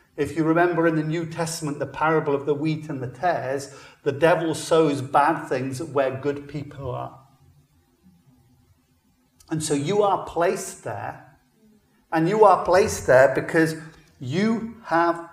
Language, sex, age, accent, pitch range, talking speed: English, male, 50-69, British, 125-160 Hz, 150 wpm